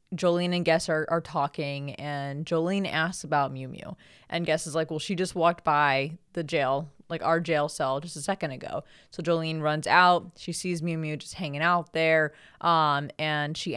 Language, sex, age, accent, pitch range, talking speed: English, female, 20-39, American, 150-180 Hz, 200 wpm